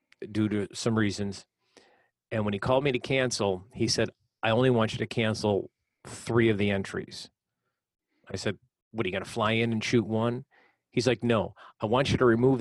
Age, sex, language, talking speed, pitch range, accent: 40-59, male, English, 205 wpm, 100-120 Hz, American